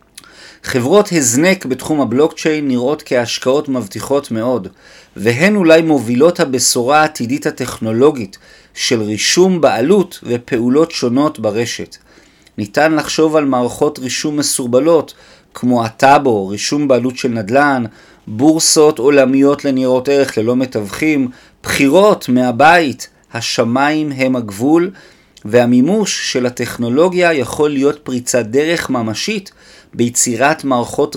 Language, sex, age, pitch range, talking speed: Hebrew, male, 40-59, 120-155 Hz, 100 wpm